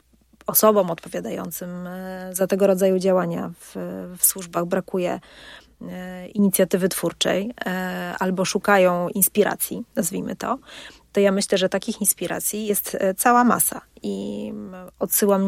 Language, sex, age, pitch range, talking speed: Polish, female, 30-49, 185-220 Hz, 110 wpm